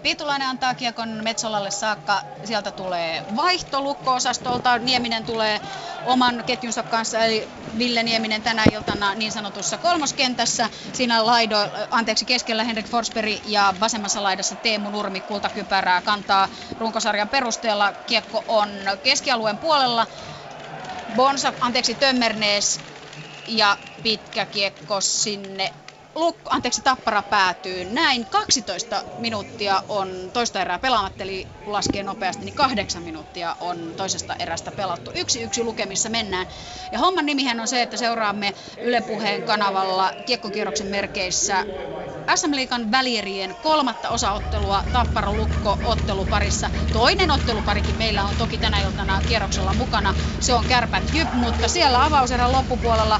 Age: 30-49